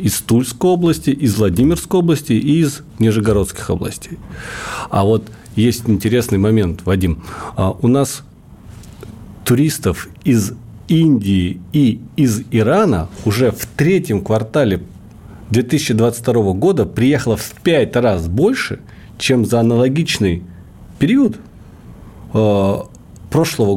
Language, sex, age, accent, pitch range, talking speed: Russian, male, 40-59, native, 95-125 Hz, 100 wpm